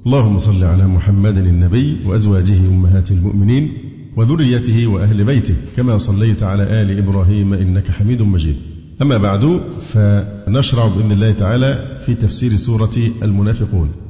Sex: male